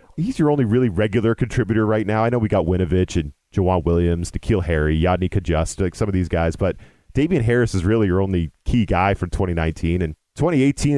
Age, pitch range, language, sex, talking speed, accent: 40-59, 95-120 Hz, English, male, 200 wpm, American